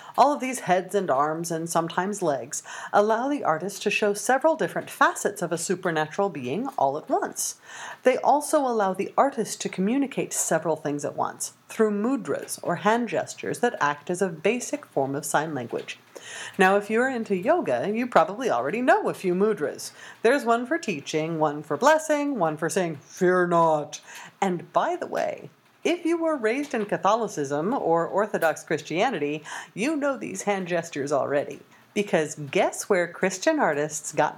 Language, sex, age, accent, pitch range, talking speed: English, female, 40-59, American, 160-235 Hz, 170 wpm